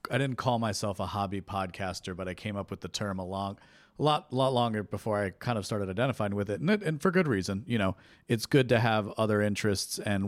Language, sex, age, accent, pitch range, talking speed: English, male, 40-59, American, 100-120 Hz, 250 wpm